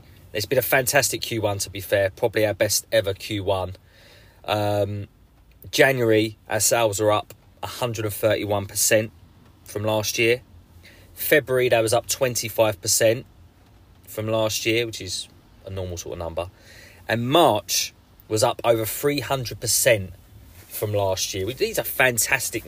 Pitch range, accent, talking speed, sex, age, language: 95-115 Hz, British, 130 wpm, male, 30-49, English